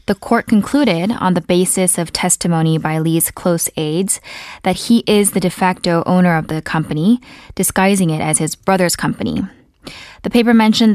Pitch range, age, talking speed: 165-215 Hz, 20-39, 170 wpm